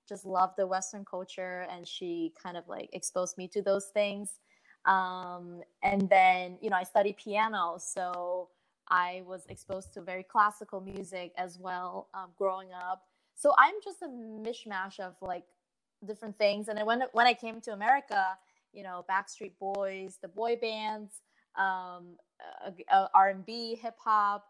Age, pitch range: 20-39, 190-235 Hz